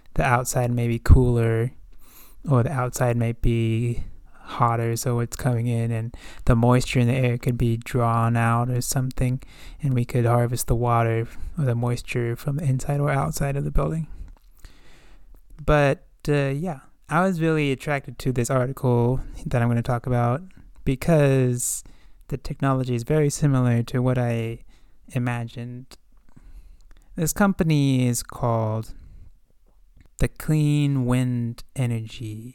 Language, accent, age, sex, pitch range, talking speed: English, American, 20-39, male, 115-140 Hz, 145 wpm